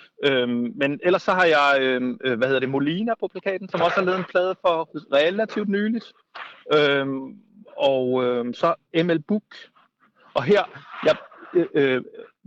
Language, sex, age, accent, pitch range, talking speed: Danish, male, 30-49, native, 140-190 Hz, 150 wpm